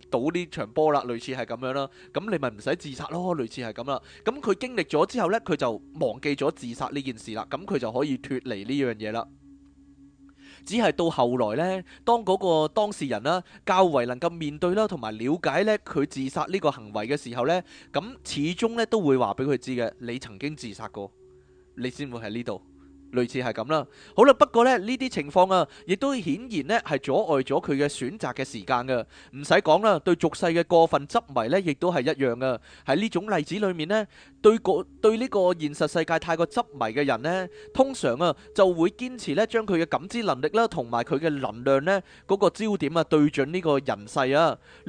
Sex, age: male, 20-39